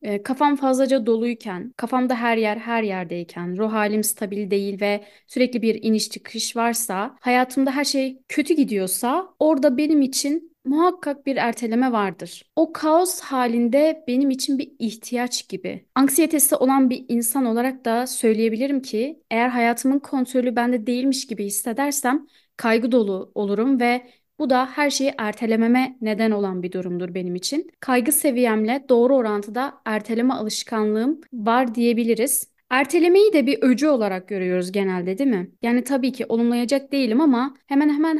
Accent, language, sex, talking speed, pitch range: native, Turkish, female, 145 wpm, 220-275 Hz